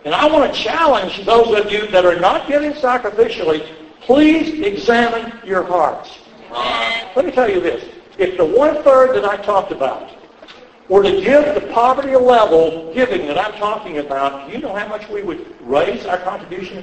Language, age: English, 60-79